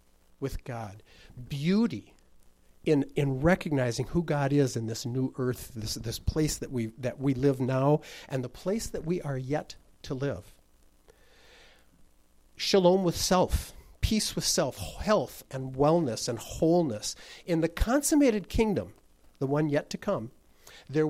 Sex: male